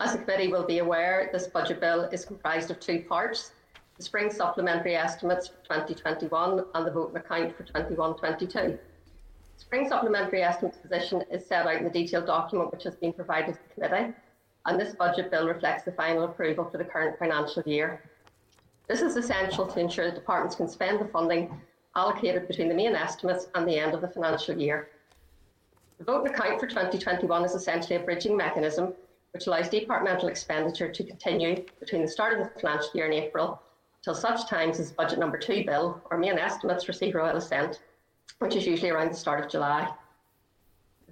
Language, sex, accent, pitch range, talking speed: English, female, Irish, 160-180 Hz, 190 wpm